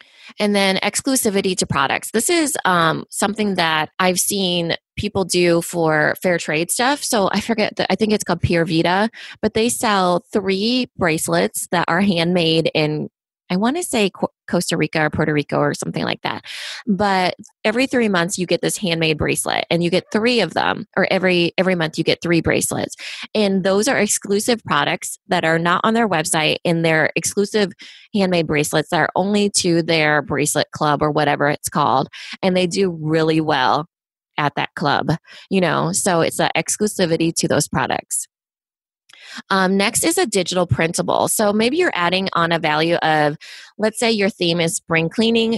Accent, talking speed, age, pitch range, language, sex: American, 180 wpm, 20-39, 160-205 Hz, English, female